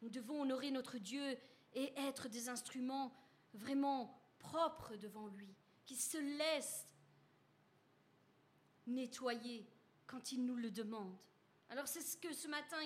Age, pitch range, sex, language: 40-59, 255-315 Hz, female, French